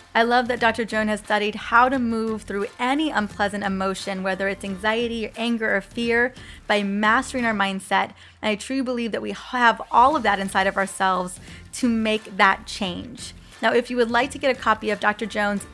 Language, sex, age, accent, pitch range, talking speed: English, female, 20-39, American, 200-245 Hz, 205 wpm